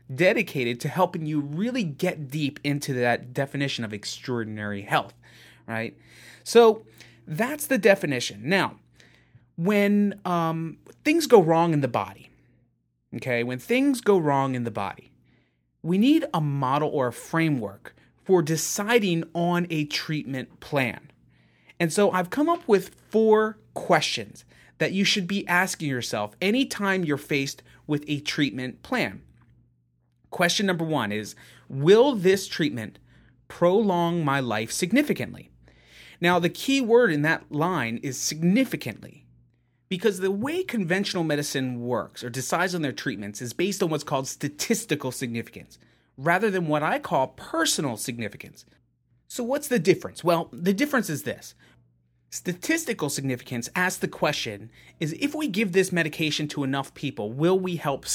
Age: 30-49